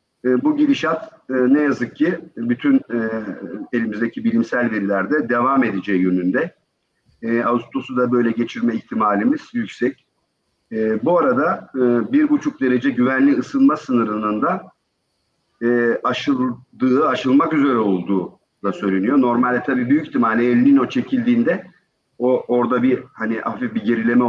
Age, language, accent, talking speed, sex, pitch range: 50-69, Turkish, native, 135 wpm, male, 115-155 Hz